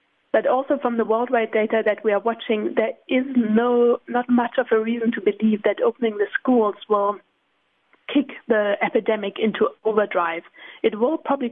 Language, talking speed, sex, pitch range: English, 170 wpm, female, 205-245 Hz